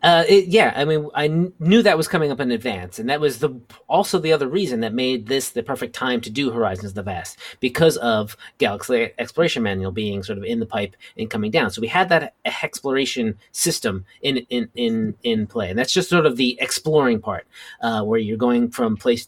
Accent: American